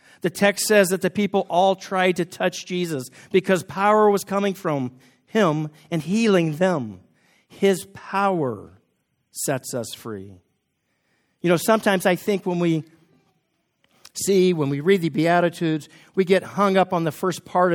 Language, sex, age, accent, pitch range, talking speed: English, male, 50-69, American, 145-190 Hz, 155 wpm